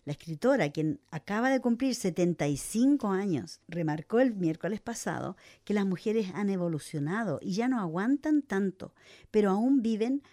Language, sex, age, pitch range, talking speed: English, female, 50-69, 165-225 Hz, 145 wpm